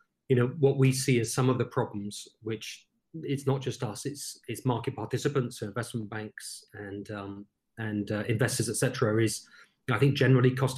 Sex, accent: male, British